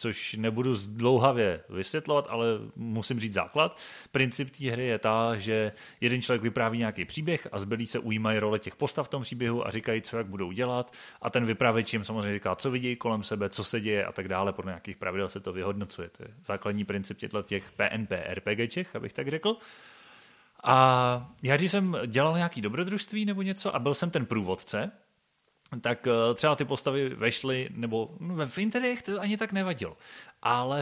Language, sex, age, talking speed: Czech, male, 30-49, 190 wpm